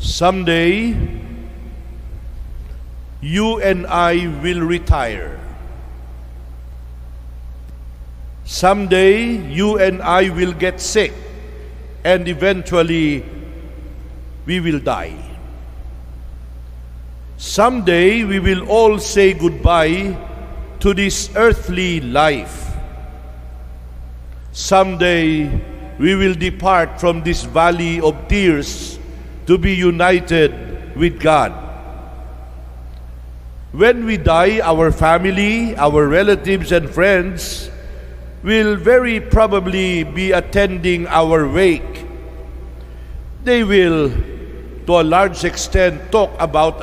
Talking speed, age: 85 wpm, 60-79